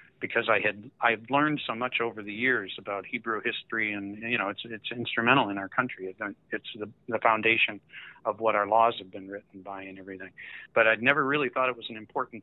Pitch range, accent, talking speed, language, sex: 100-120 Hz, American, 220 wpm, English, male